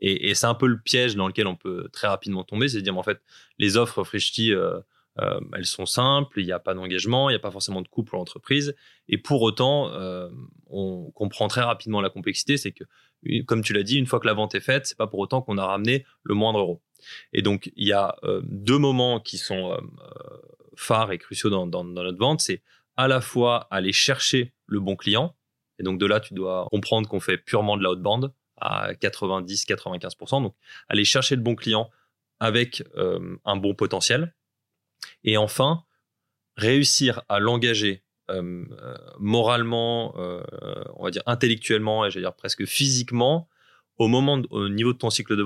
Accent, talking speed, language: French, 205 wpm, French